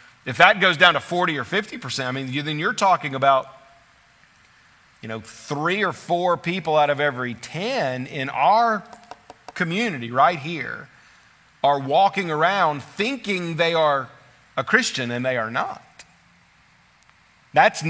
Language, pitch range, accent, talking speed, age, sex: English, 140-175 Hz, American, 140 wpm, 40-59, male